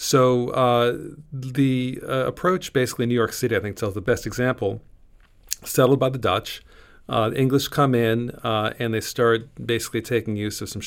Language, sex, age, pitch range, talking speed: English, male, 40-59, 110-130 Hz, 180 wpm